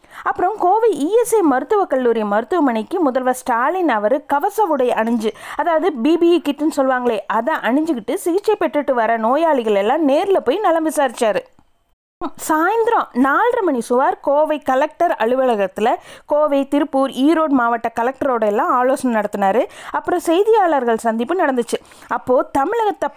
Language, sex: Tamil, female